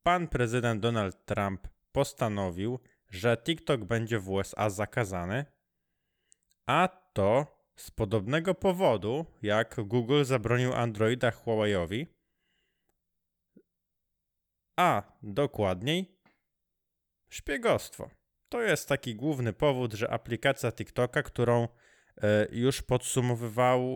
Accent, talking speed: native, 90 wpm